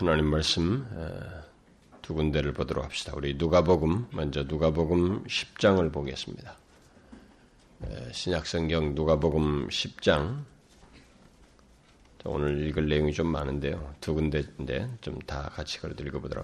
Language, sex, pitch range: Korean, male, 75-85 Hz